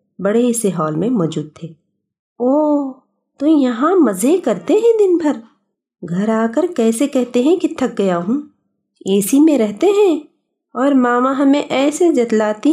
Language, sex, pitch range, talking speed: Urdu, female, 185-260 Hz, 155 wpm